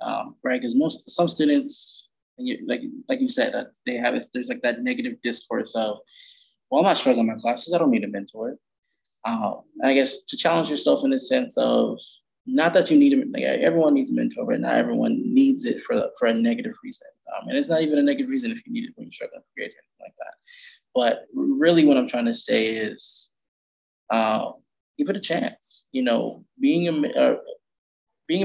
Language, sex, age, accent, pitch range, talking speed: English, male, 20-39, American, 175-275 Hz, 215 wpm